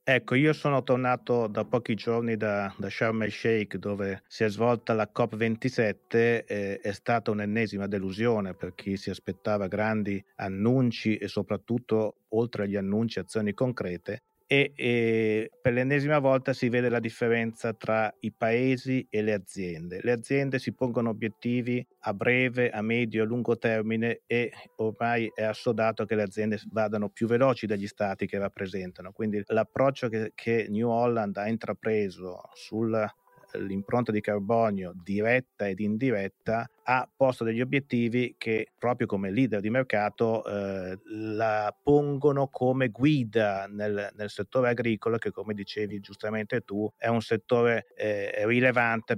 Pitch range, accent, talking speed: 105-120 Hz, native, 150 wpm